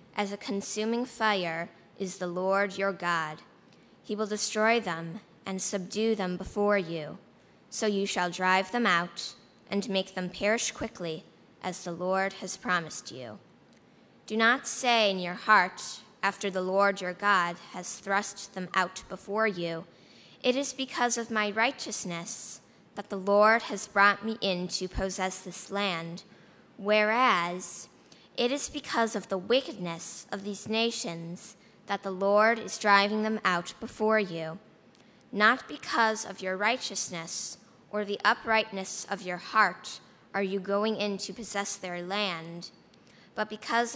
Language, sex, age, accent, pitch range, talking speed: English, female, 20-39, American, 180-215 Hz, 150 wpm